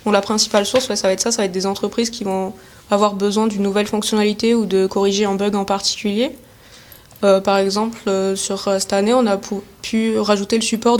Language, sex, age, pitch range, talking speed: French, female, 20-39, 200-225 Hz, 225 wpm